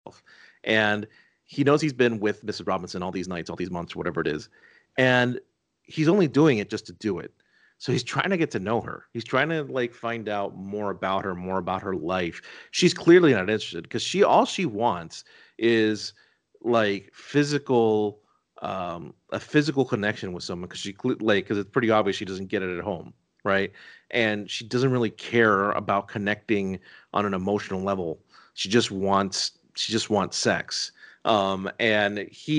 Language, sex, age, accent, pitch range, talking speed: English, male, 40-59, American, 95-120 Hz, 185 wpm